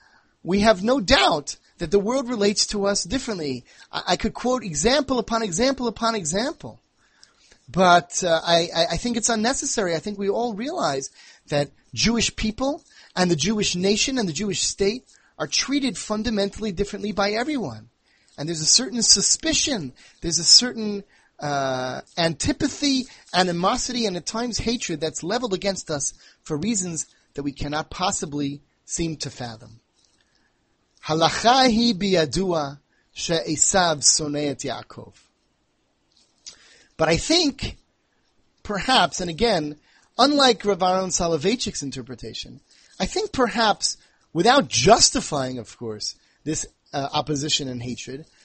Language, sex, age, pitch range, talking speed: English, male, 30-49, 155-235 Hz, 125 wpm